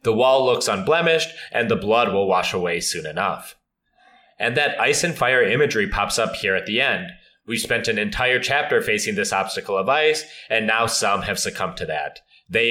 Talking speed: 200 wpm